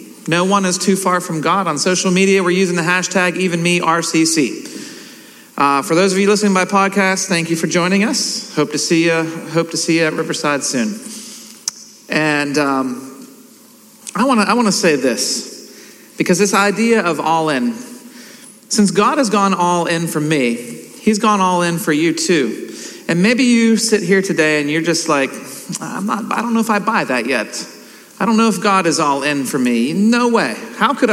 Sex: male